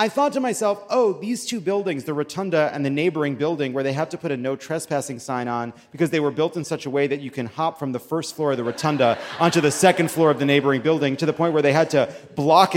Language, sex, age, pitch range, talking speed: English, male, 30-49, 145-225 Hz, 275 wpm